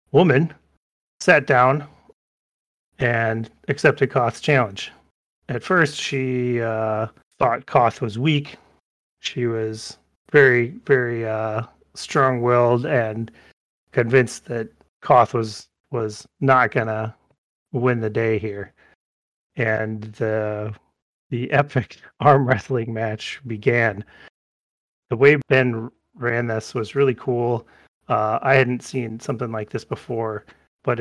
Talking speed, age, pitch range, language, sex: 110 wpm, 30-49, 115-130 Hz, English, male